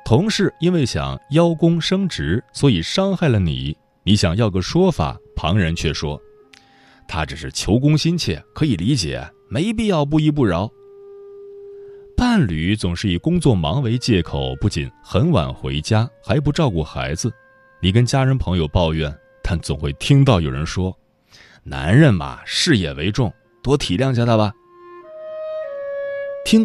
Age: 30-49